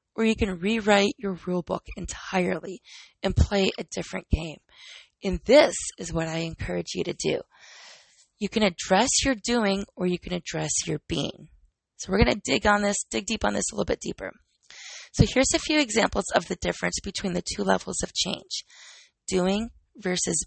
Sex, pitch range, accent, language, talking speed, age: female, 185-230 Hz, American, English, 190 wpm, 20-39